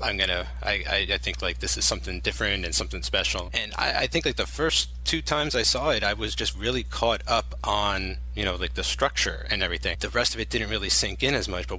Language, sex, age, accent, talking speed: English, male, 30-49, American, 255 wpm